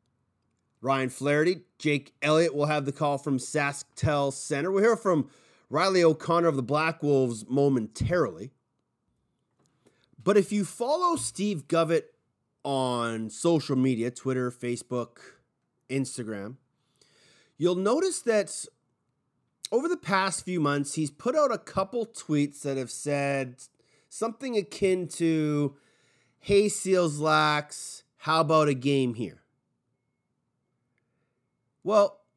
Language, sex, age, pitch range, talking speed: English, male, 30-49, 130-180 Hz, 115 wpm